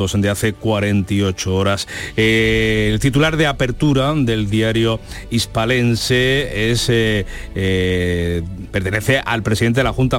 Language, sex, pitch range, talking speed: Spanish, male, 105-125 Hz, 125 wpm